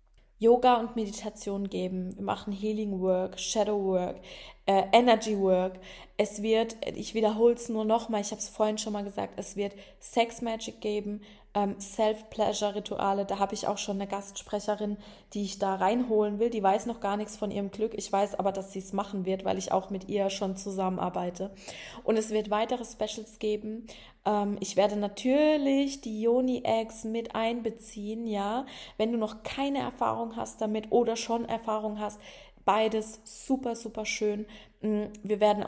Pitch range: 195-220 Hz